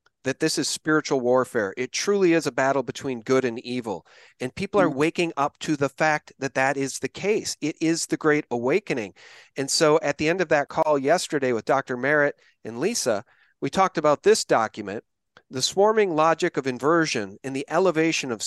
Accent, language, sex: American, English, male